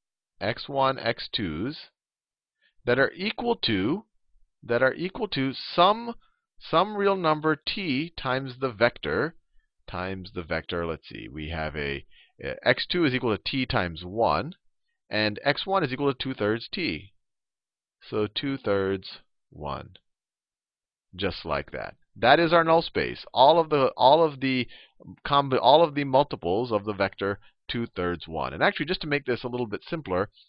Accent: American